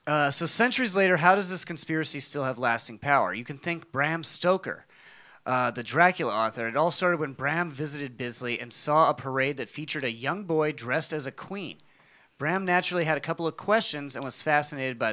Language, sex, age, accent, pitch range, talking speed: English, male, 30-49, American, 130-165 Hz, 205 wpm